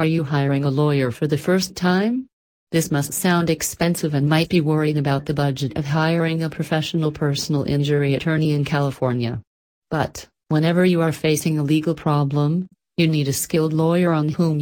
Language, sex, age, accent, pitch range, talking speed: English, female, 40-59, American, 140-165 Hz, 180 wpm